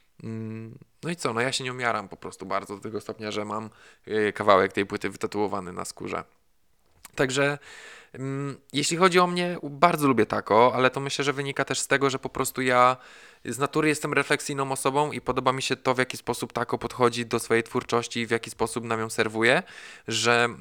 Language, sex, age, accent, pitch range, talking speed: Polish, male, 20-39, native, 110-130 Hz, 195 wpm